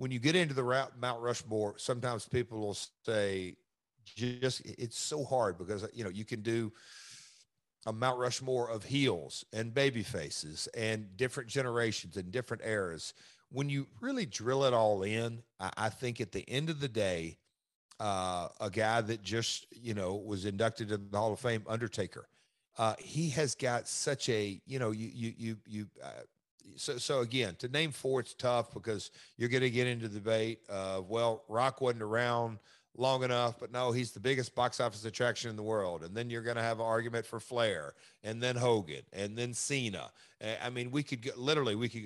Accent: American